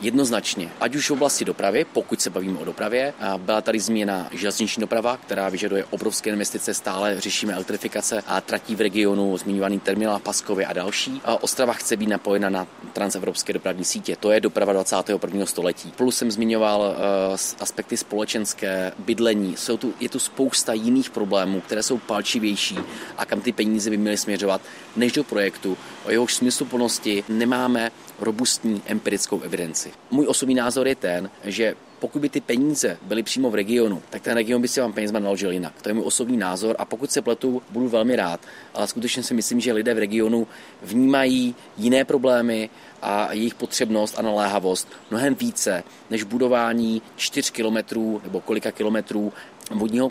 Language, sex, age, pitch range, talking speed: Czech, male, 30-49, 100-120 Hz, 165 wpm